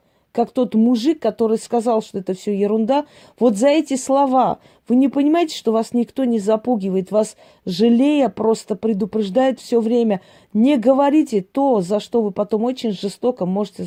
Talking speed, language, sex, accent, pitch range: 160 wpm, Russian, female, native, 210-260 Hz